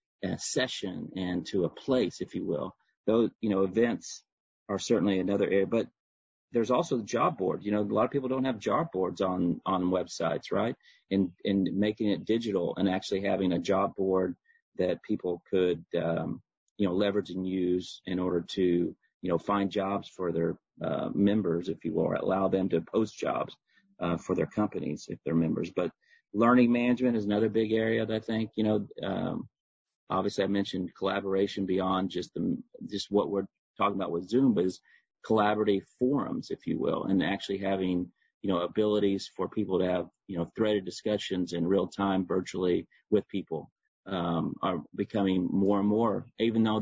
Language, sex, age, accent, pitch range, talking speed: English, male, 40-59, American, 95-110 Hz, 185 wpm